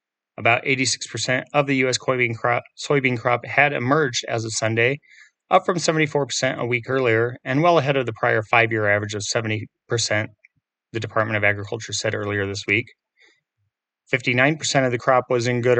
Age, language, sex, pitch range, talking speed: 30-49, English, male, 110-135 Hz, 165 wpm